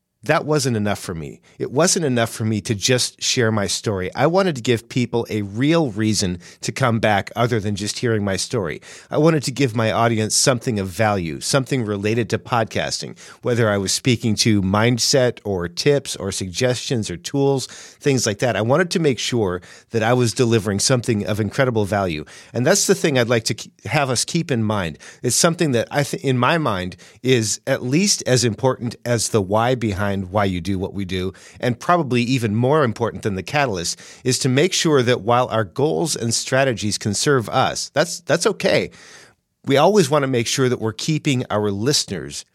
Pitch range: 105-130 Hz